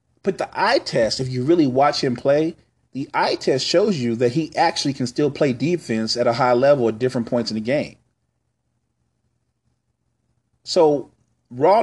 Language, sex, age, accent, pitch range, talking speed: English, male, 40-59, American, 115-145 Hz, 170 wpm